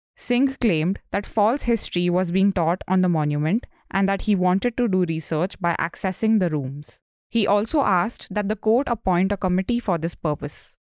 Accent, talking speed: Indian, 185 wpm